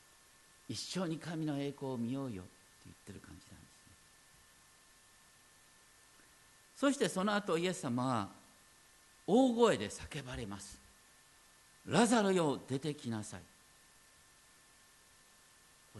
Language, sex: Japanese, male